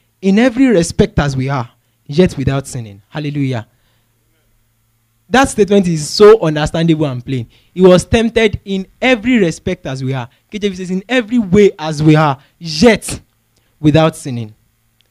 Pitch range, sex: 125-205 Hz, male